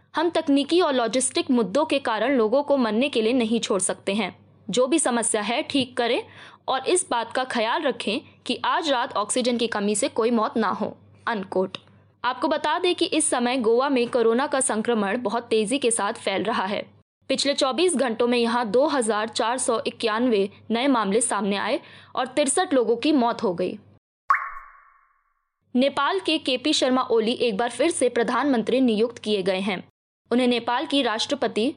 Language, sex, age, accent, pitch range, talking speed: Hindi, female, 20-39, native, 225-280 Hz, 175 wpm